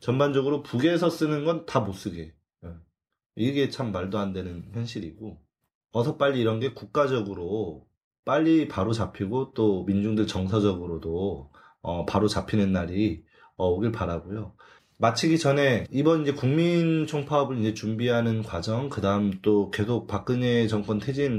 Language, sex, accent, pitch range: Korean, male, native, 100-135 Hz